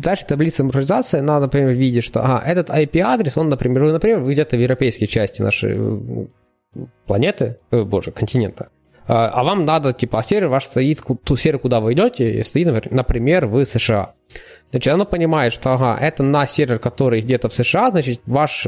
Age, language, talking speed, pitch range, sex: 20-39, Ukrainian, 175 wpm, 120-150 Hz, male